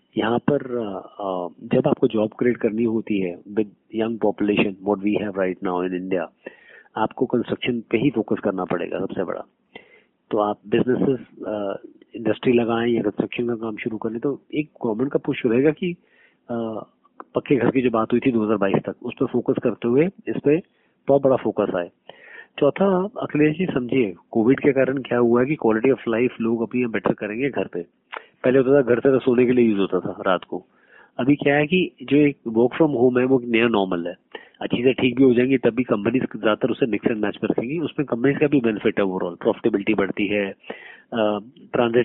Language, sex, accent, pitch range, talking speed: Hindi, male, native, 105-130 Hz, 155 wpm